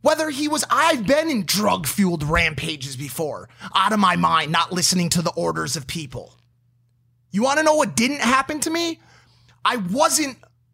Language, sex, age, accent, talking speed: English, male, 30-49, American, 175 wpm